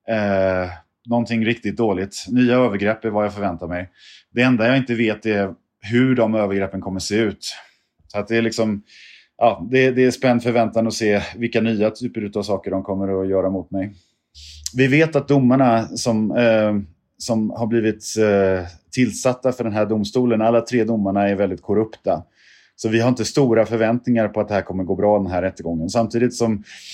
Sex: male